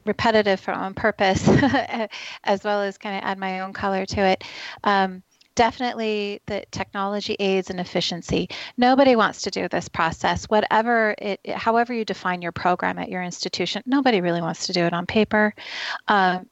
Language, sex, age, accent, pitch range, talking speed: English, female, 30-49, American, 185-220 Hz, 170 wpm